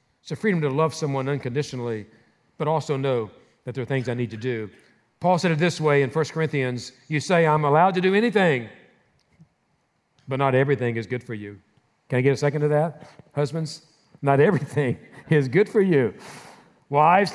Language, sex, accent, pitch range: English, male, American, 130-180 Hz